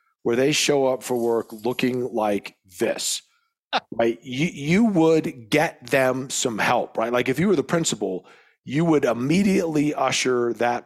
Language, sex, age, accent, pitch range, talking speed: English, male, 40-59, American, 115-155 Hz, 160 wpm